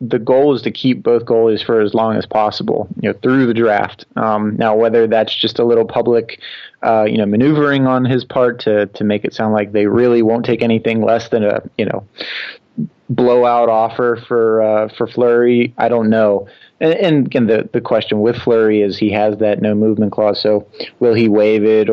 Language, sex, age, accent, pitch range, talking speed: English, male, 30-49, American, 105-120 Hz, 210 wpm